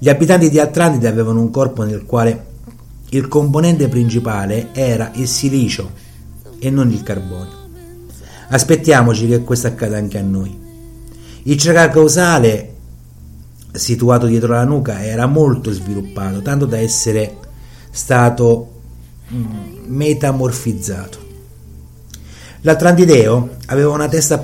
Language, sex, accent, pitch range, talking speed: Italian, male, native, 100-130 Hz, 110 wpm